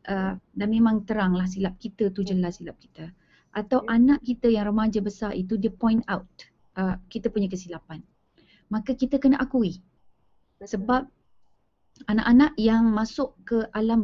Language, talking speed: Malay, 145 wpm